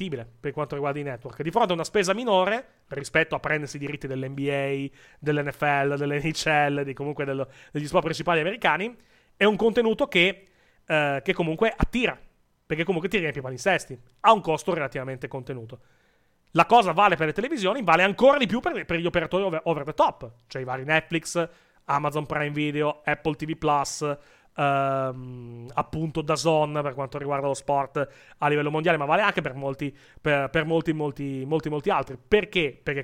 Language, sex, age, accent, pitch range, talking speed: Italian, male, 30-49, native, 140-180 Hz, 180 wpm